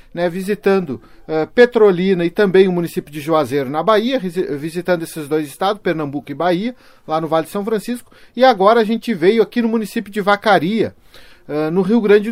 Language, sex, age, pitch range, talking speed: Portuguese, male, 40-59, 170-215 Hz, 180 wpm